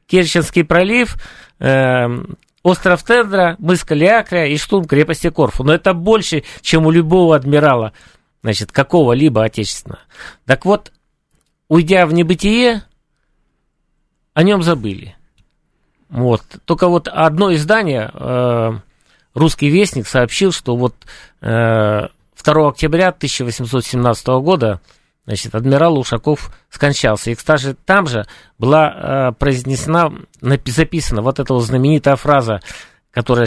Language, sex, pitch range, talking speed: Russian, male, 115-160 Hz, 110 wpm